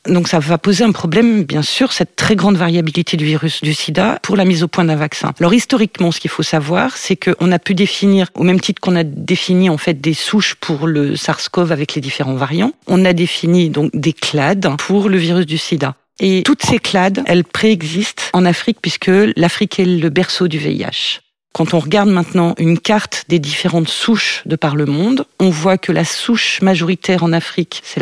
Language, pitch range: French, 160-195 Hz